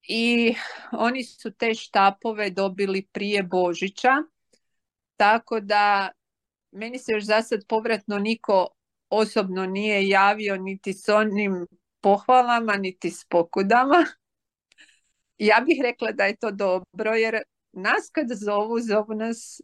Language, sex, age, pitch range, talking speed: Croatian, female, 40-59, 190-225 Hz, 120 wpm